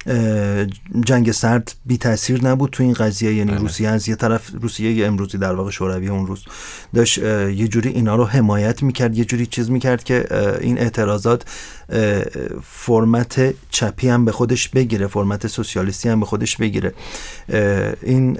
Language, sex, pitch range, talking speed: Persian, male, 100-125 Hz, 155 wpm